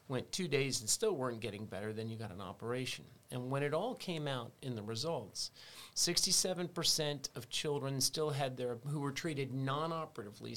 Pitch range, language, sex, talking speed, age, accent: 120-150 Hz, English, male, 180 wpm, 40-59, American